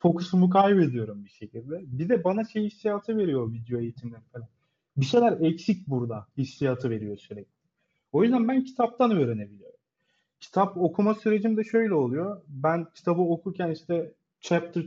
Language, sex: Turkish, male